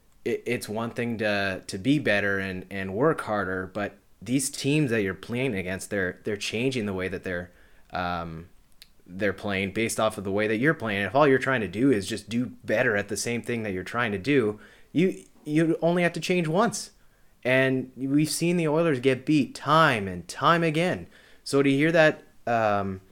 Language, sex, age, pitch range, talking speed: English, male, 30-49, 100-135 Hz, 200 wpm